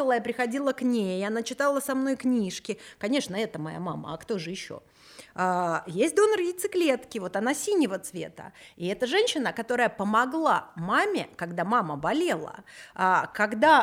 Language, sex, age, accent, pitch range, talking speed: Russian, female, 30-49, native, 185-270 Hz, 155 wpm